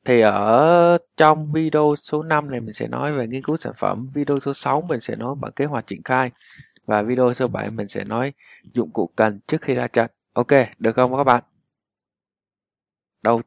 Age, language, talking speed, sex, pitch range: 20-39, Vietnamese, 205 wpm, male, 110-150 Hz